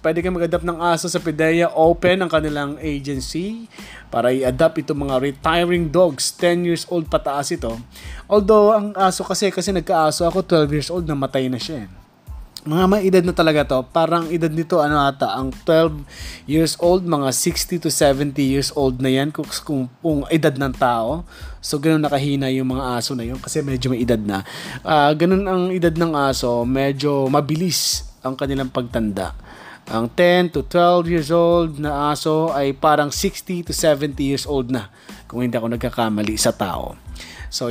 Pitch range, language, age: 135-175 Hz, Filipino, 20-39